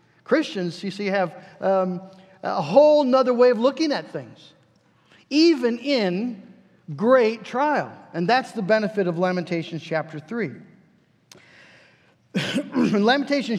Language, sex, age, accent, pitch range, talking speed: English, male, 50-69, American, 185-260 Hz, 120 wpm